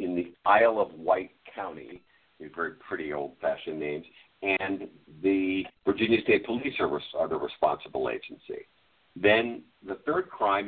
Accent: American